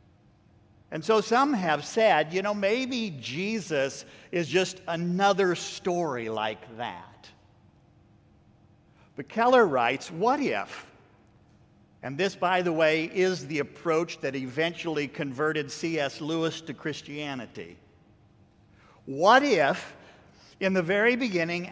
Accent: American